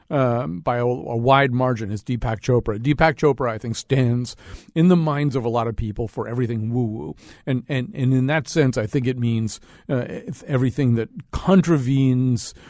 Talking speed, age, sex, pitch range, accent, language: 185 wpm, 40-59, male, 115-140 Hz, American, English